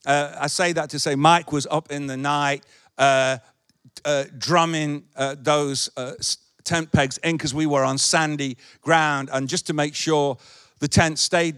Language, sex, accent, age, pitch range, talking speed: English, male, British, 50-69, 135-185 Hz, 180 wpm